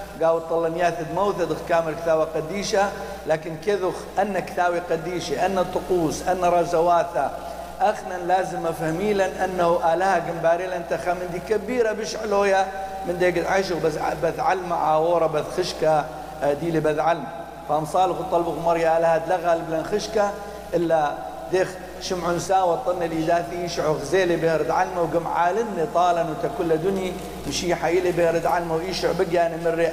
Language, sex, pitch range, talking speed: English, male, 160-180 Hz, 140 wpm